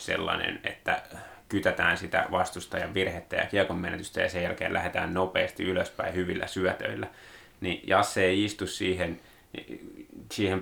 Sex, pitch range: male, 95-110 Hz